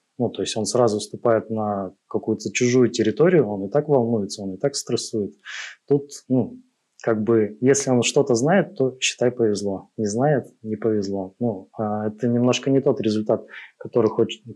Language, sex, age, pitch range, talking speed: Russian, male, 20-39, 105-125 Hz, 170 wpm